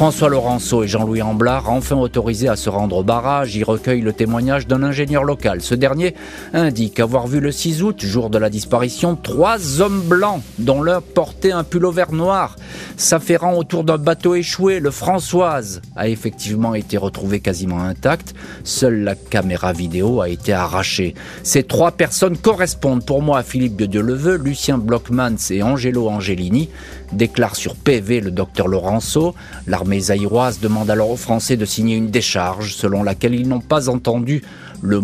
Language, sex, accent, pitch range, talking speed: French, male, French, 95-135 Hz, 170 wpm